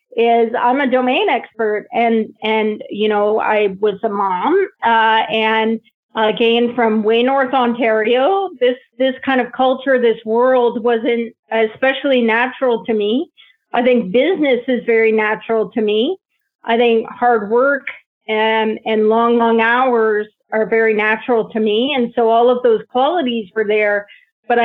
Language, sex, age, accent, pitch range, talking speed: English, female, 40-59, American, 220-255 Hz, 155 wpm